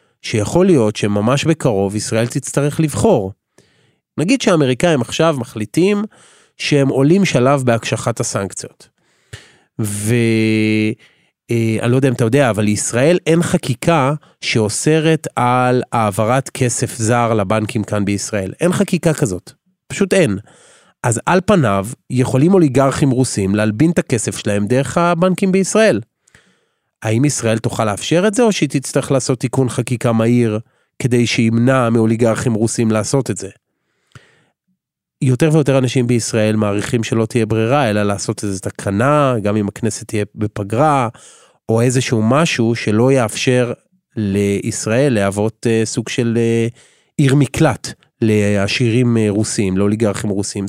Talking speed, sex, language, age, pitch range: 125 wpm, male, Hebrew, 30-49, 110-145 Hz